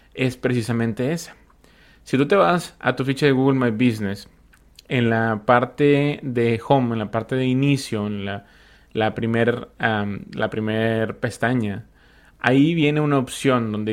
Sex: male